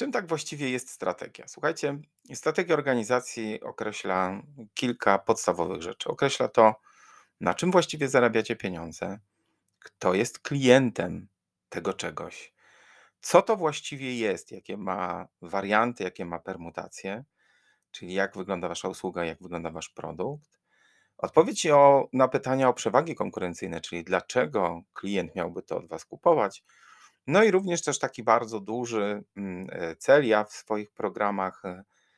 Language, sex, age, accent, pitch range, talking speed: Polish, male, 40-59, native, 95-125 Hz, 130 wpm